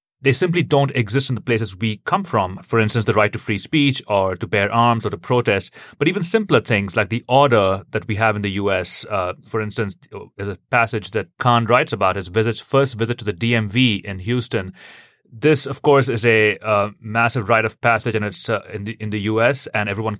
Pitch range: 105-125 Hz